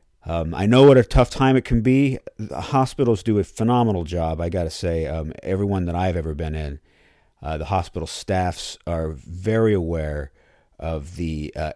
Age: 50-69